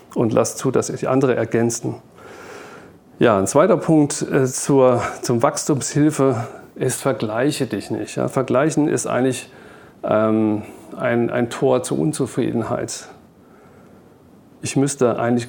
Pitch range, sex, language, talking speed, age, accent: 110-125 Hz, male, German, 110 wpm, 40-59, German